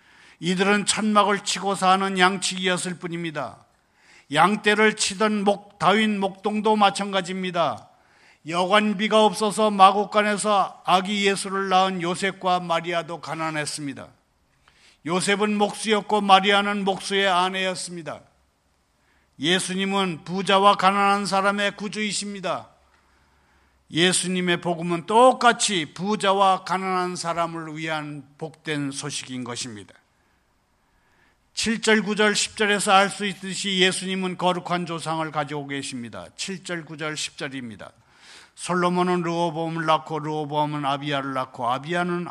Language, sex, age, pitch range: Korean, male, 50-69, 145-200 Hz